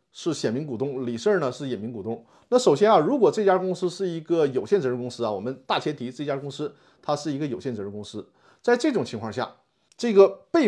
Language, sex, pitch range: Chinese, male, 125-190 Hz